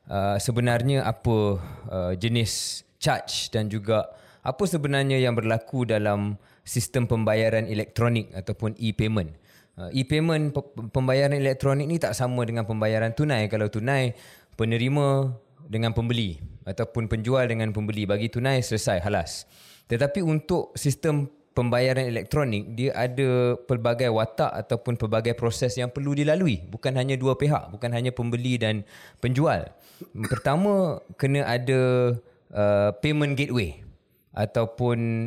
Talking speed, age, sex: 125 wpm, 20-39, male